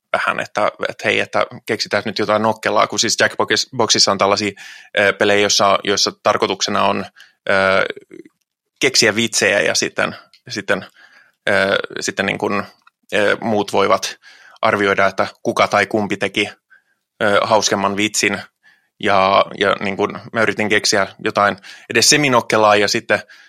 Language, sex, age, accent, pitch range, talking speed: Finnish, male, 20-39, native, 100-115 Hz, 130 wpm